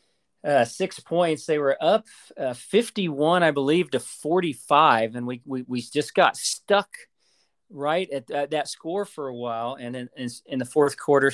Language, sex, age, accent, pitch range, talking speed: English, male, 40-59, American, 130-170 Hz, 185 wpm